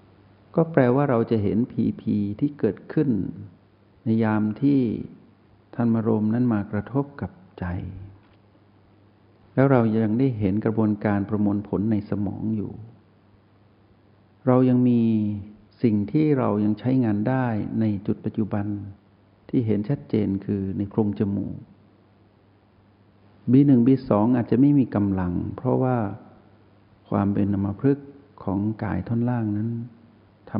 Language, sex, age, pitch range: Thai, male, 60-79, 100-115 Hz